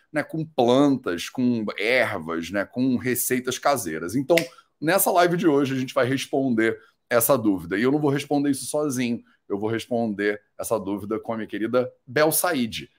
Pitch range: 115-150 Hz